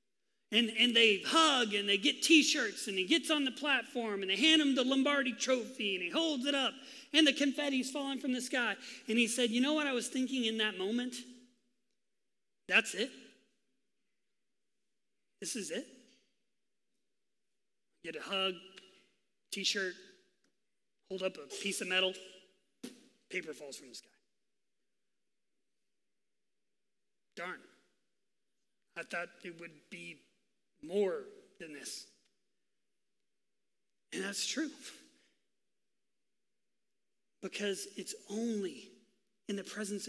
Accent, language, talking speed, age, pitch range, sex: American, English, 125 wpm, 30-49, 205-270 Hz, male